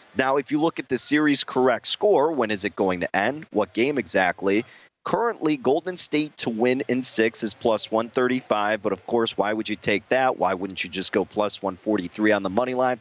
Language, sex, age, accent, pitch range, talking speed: English, male, 30-49, American, 110-140 Hz, 215 wpm